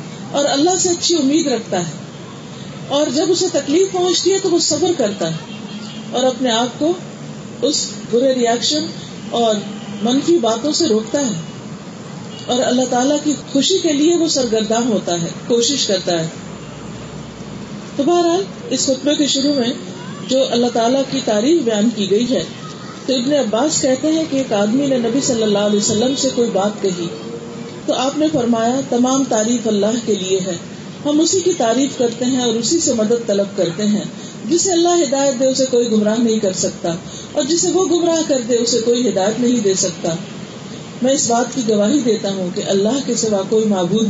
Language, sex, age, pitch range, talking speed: Urdu, female, 40-59, 205-275 Hz, 185 wpm